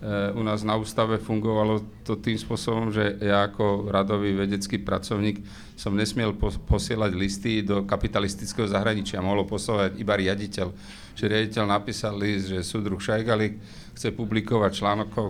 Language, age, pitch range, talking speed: Slovak, 40-59, 100-110 Hz, 135 wpm